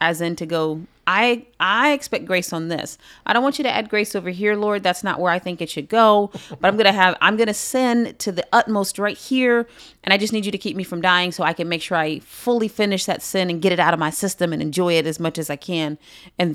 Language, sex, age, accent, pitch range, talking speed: English, female, 30-49, American, 165-210 Hz, 275 wpm